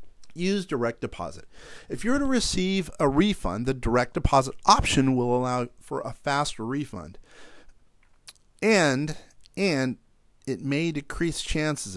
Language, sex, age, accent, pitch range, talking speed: English, male, 40-59, American, 120-165 Hz, 130 wpm